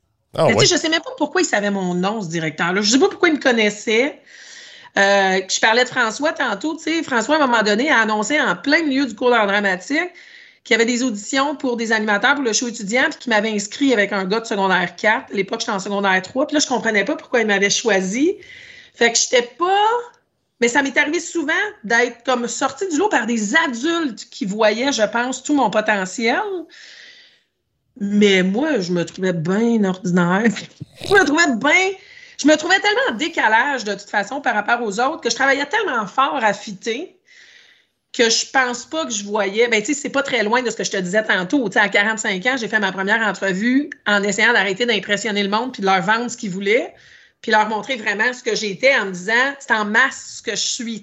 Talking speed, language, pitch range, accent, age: 230 wpm, French, 210-295 Hz, Canadian, 40-59